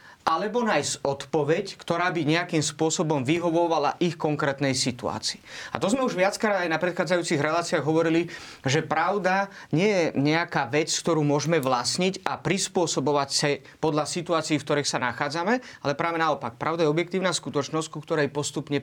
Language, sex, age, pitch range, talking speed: Slovak, male, 30-49, 140-175 Hz, 155 wpm